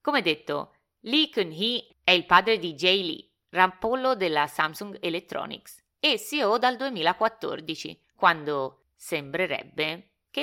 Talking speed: 120 wpm